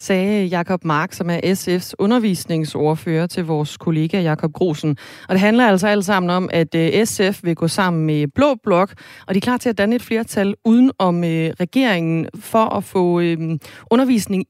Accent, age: native, 30-49